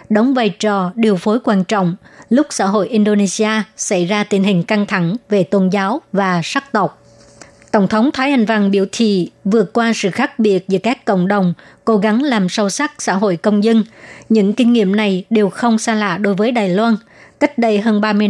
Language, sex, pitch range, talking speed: Vietnamese, male, 200-225 Hz, 210 wpm